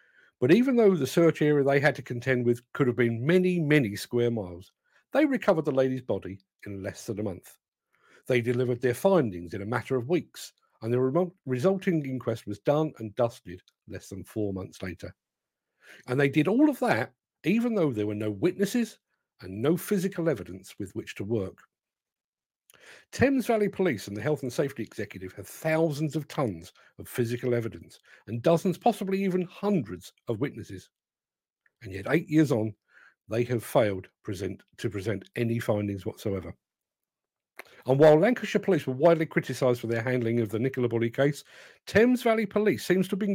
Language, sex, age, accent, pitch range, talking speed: English, male, 50-69, British, 110-175 Hz, 175 wpm